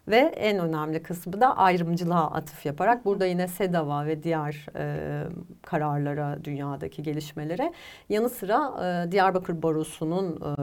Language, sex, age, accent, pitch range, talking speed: Turkish, female, 40-59, native, 155-205 Hz, 130 wpm